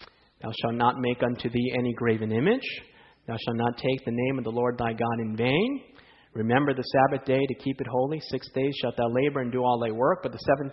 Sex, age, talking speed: male, 30-49, 240 wpm